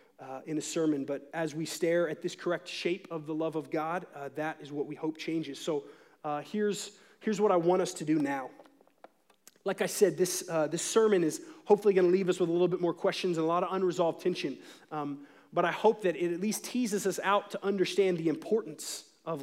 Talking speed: 235 wpm